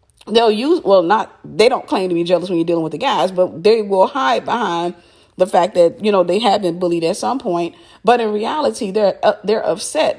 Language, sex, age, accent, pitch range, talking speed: English, female, 40-59, American, 175-210 Hz, 235 wpm